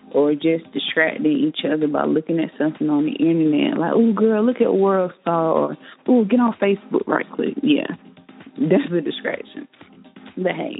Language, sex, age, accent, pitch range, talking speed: English, female, 30-49, American, 170-255 Hz, 180 wpm